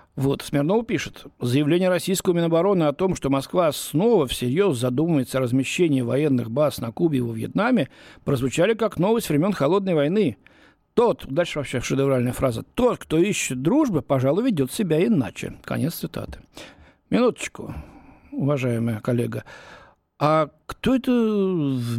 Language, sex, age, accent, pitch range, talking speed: Russian, male, 60-79, native, 135-200 Hz, 135 wpm